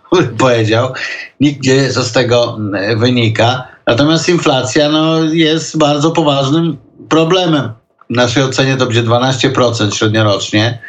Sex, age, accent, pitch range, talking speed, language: male, 50-69, native, 110-135 Hz, 115 wpm, Polish